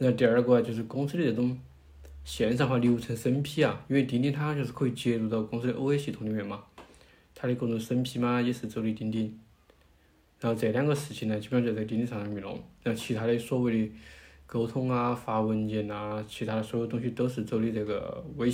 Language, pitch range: Chinese, 105-130 Hz